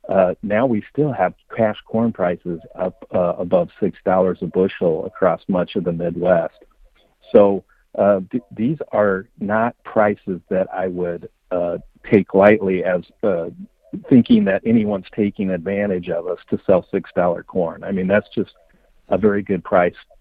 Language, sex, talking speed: English, male, 155 wpm